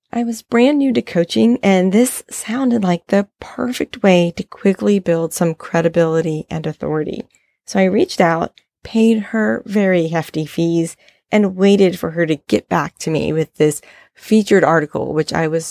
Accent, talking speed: American, 170 wpm